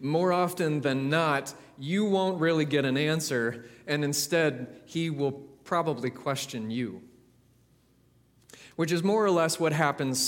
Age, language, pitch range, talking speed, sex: 30-49, English, 135-170 Hz, 140 wpm, male